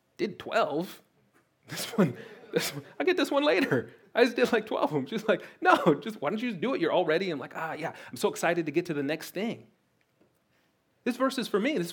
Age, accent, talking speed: 30-49, American, 250 wpm